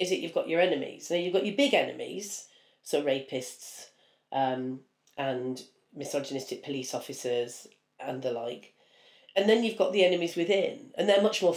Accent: British